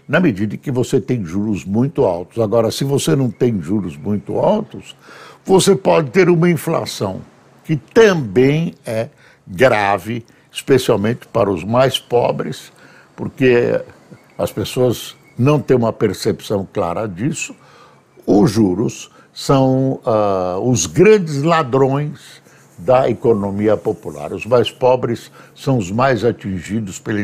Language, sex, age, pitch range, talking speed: Portuguese, male, 60-79, 105-140 Hz, 125 wpm